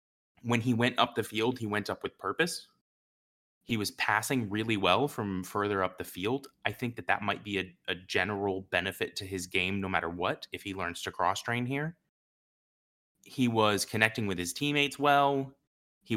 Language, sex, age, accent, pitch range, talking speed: English, male, 20-39, American, 95-125 Hz, 195 wpm